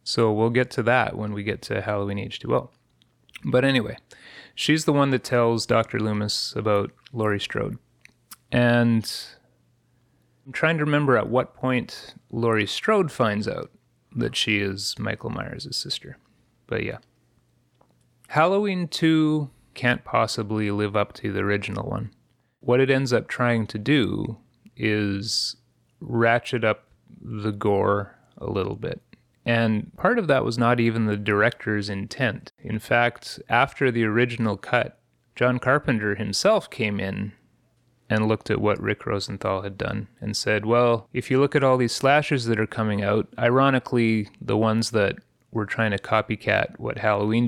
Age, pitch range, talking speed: 30-49, 105-135 Hz, 155 wpm